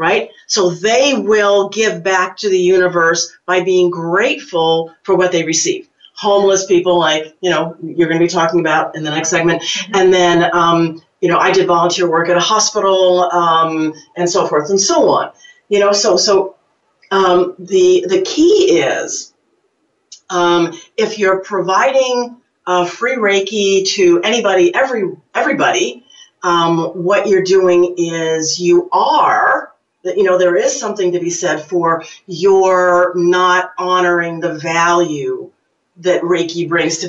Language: English